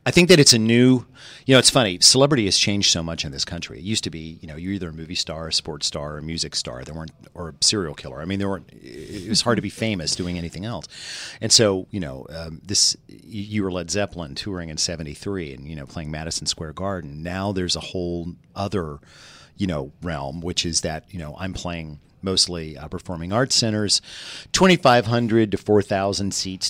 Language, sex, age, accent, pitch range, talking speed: English, male, 40-59, American, 75-100 Hz, 225 wpm